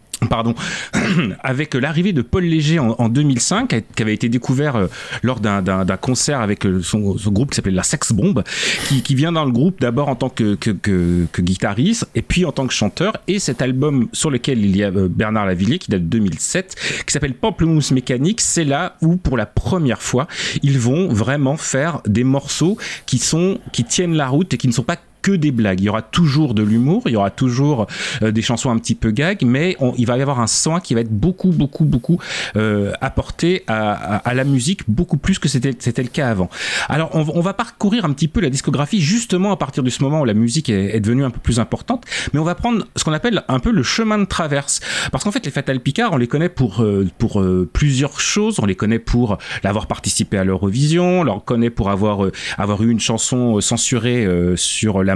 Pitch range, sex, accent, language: 110-155 Hz, male, French, French